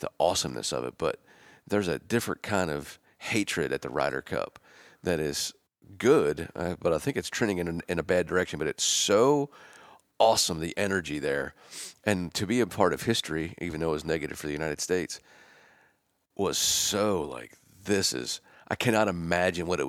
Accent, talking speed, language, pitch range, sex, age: American, 185 wpm, English, 85-110 Hz, male, 40-59